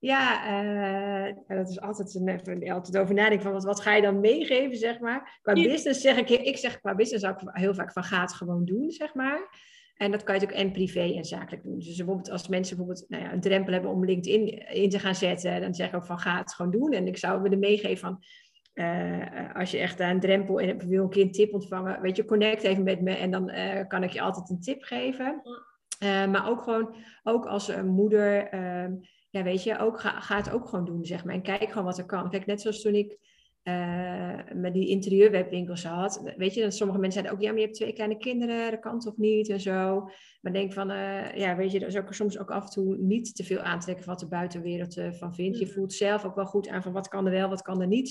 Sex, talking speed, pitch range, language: female, 245 wpm, 185-215 Hz, Dutch